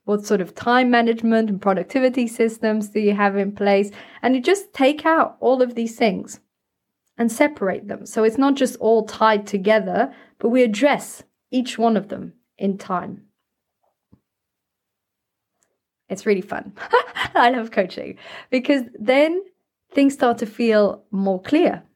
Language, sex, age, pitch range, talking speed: English, female, 20-39, 190-245 Hz, 150 wpm